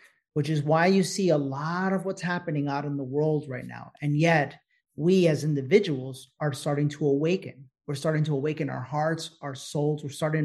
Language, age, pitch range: English, 30-49, 145-170 Hz